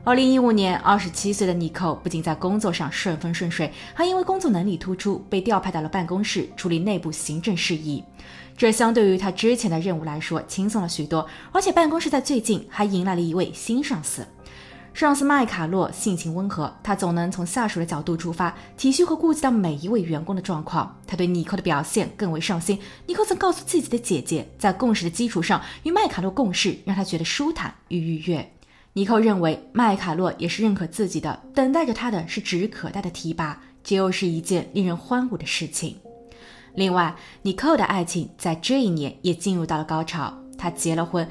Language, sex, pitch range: Chinese, female, 165-220 Hz